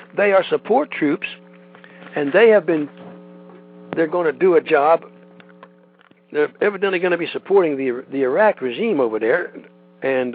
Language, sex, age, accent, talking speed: English, male, 60-79, American, 155 wpm